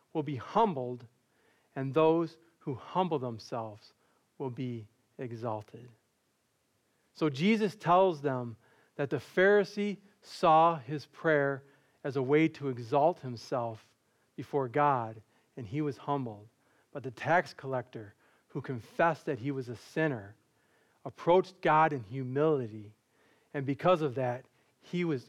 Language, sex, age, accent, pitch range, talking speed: English, male, 40-59, American, 130-175 Hz, 130 wpm